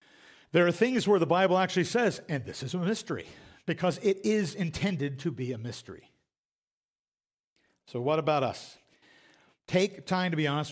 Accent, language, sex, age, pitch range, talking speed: American, English, male, 50-69, 150-190 Hz, 170 wpm